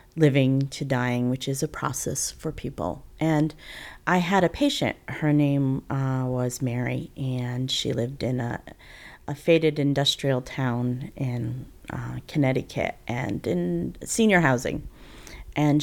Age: 30-49